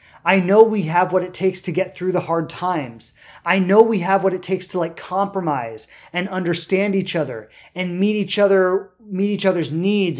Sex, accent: male, American